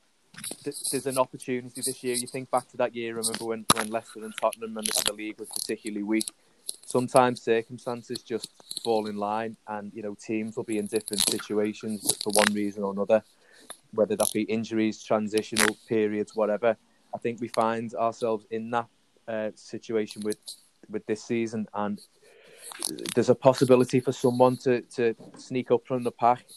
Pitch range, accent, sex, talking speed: 110-125 Hz, British, male, 175 wpm